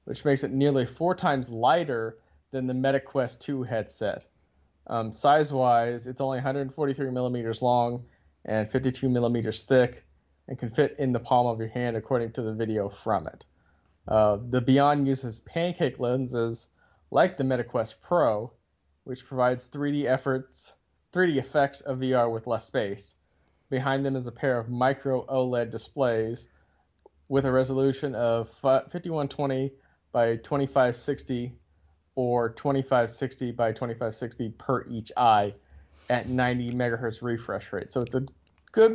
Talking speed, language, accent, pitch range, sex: 140 wpm, English, American, 115-135 Hz, male